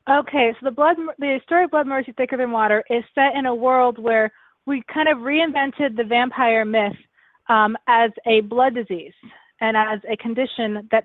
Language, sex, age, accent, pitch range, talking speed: English, female, 20-39, American, 205-245 Hz, 190 wpm